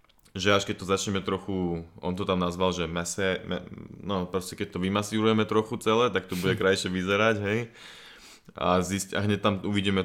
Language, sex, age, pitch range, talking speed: Slovak, male, 20-39, 90-105 Hz, 190 wpm